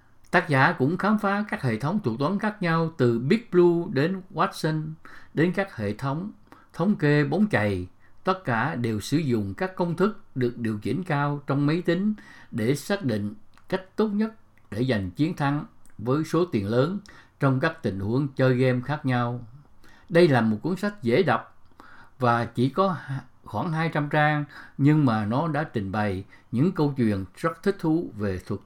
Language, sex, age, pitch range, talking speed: English, male, 60-79, 115-170 Hz, 185 wpm